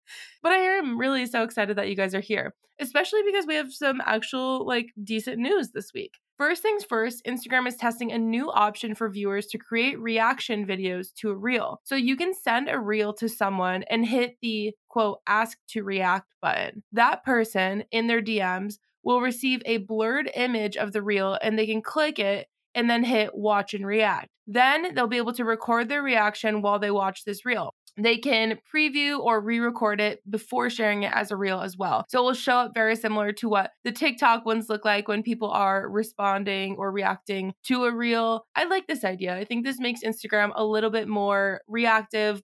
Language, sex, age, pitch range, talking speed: English, female, 20-39, 205-250 Hz, 205 wpm